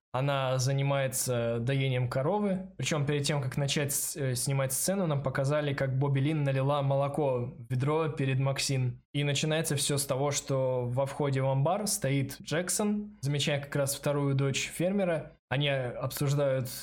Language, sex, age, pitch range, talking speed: Russian, male, 20-39, 130-150 Hz, 150 wpm